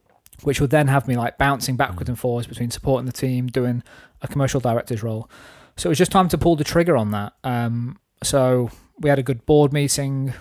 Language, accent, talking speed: English, British, 220 wpm